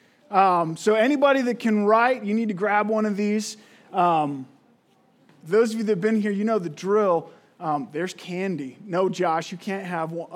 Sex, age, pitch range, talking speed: male, 20-39, 180-235 Hz, 195 wpm